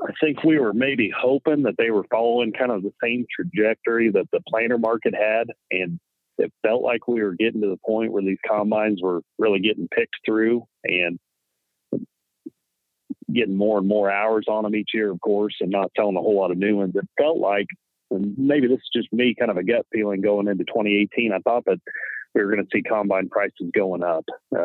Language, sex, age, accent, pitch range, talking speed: English, male, 40-59, American, 100-130 Hz, 215 wpm